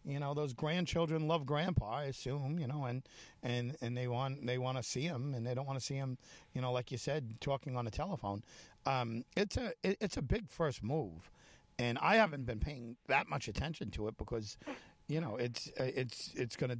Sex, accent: male, American